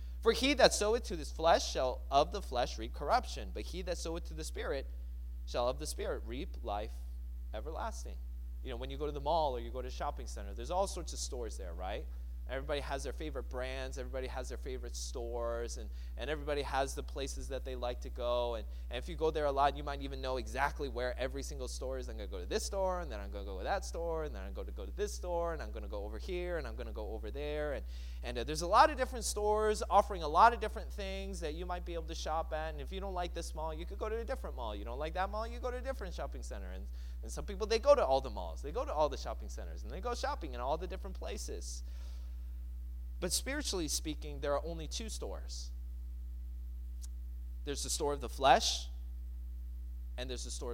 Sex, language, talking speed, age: male, English, 260 wpm, 20-39